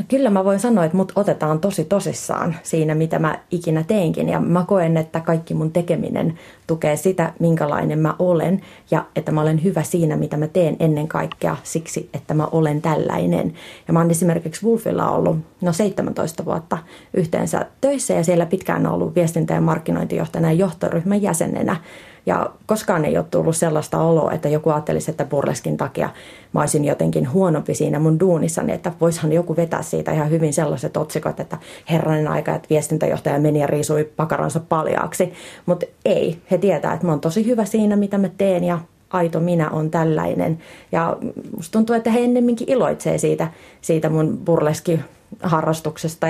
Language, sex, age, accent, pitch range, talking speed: Finnish, female, 30-49, native, 155-185 Hz, 165 wpm